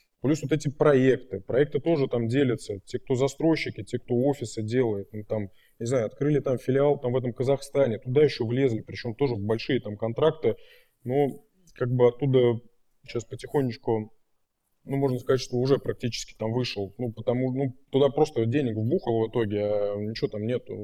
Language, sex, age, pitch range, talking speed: Russian, male, 20-39, 115-140 Hz, 180 wpm